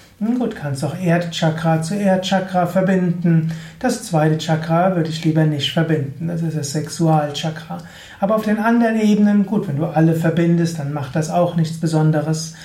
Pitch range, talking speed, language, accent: 160-195 Hz, 170 wpm, German, German